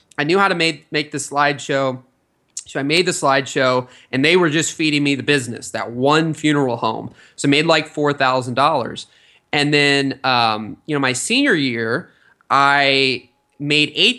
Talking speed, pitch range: 170 wpm, 120-140 Hz